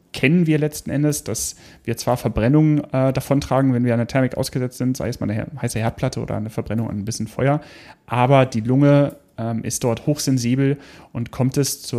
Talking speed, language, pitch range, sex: 200 wpm, German, 115-140 Hz, male